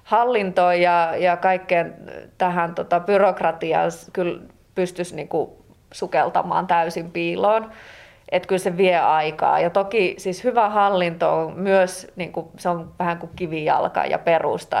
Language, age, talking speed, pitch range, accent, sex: Finnish, 30-49, 120 wpm, 170-200 Hz, native, female